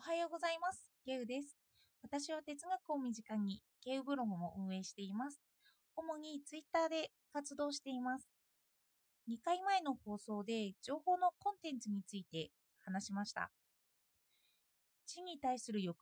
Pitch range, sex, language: 210-320 Hz, female, Japanese